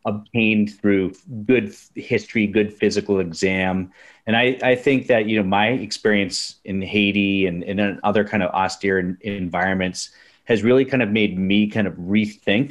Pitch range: 95-115 Hz